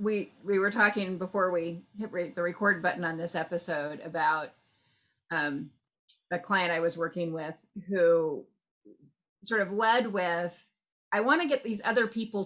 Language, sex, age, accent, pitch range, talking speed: English, female, 30-49, American, 180-245 Hz, 165 wpm